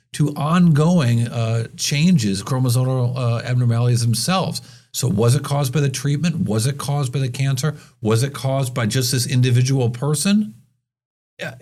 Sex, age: male, 50-69